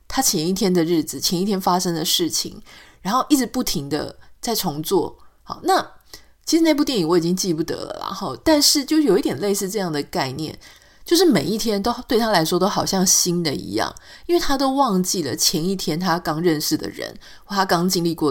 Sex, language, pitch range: female, Chinese, 170-260 Hz